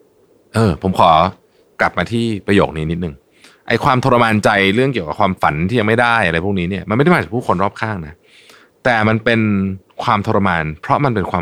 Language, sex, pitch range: Thai, male, 90-140 Hz